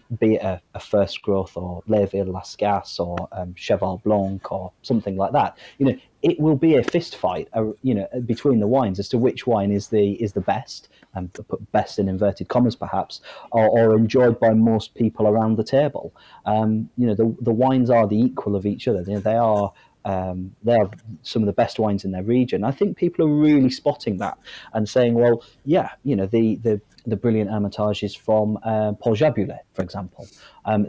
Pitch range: 105-130 Hz